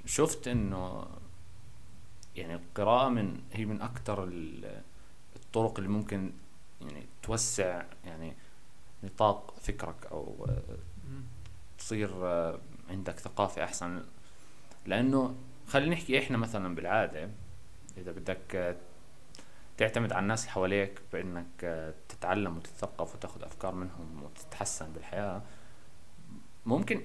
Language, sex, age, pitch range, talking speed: Arabic, male, 30-49, 85-115 Hz, 95 wpm